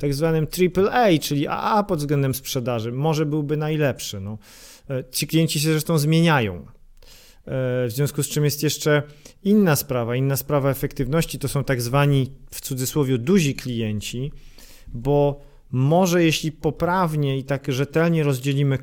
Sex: male